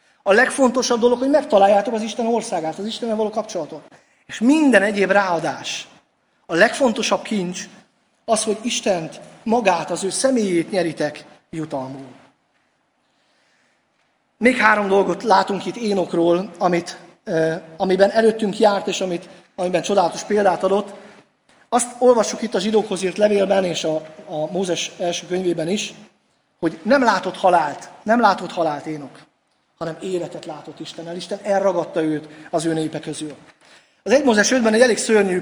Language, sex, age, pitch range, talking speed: Hungarian, male, 30-49, 170-225 Hz, 135 wpm